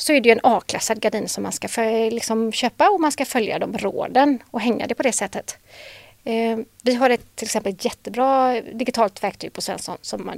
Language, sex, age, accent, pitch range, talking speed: Swedish, female, 30-49, native, 210-255 Hz, 215 wpm